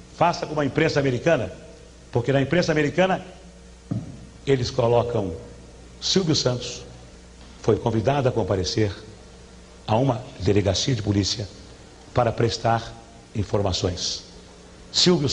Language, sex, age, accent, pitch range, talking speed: Portuguese, male, 60-79, Brazilian, 100-145 Hz, 100 wpm